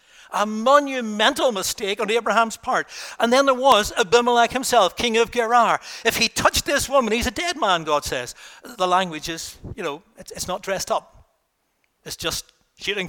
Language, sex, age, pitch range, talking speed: English, male, 60-79, 140-220 Hz, 175 wpm